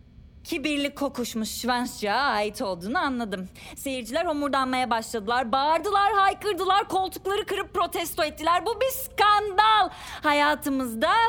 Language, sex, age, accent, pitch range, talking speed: Turkish, female, 30-49, native, 225-335 Hz, 100 wpm